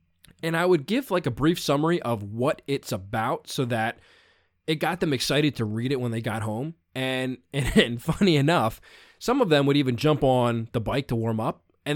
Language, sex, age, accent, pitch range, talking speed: English, male, 20-39, American, 125-165 Hz, 215 wpm